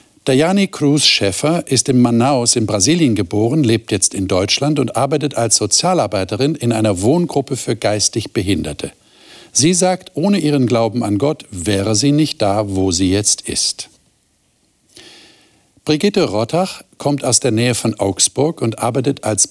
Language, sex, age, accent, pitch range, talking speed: German, male, 50-69, German, 105-145 Hz, 150 wpm